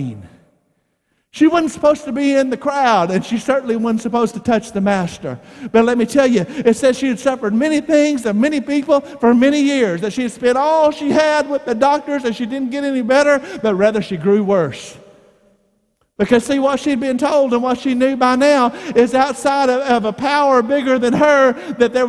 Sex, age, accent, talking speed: male, 50-69, American, 215 wpm